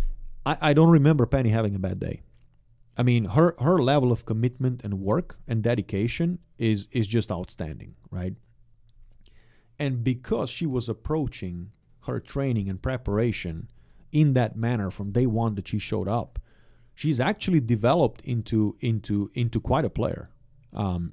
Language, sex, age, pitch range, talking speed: English, male, 40-59, 105-125 Hz, 155 wpm